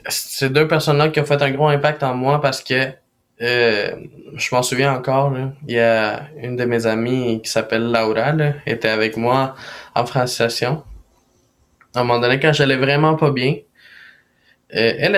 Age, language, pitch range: 20-39, French, 115-135 Hz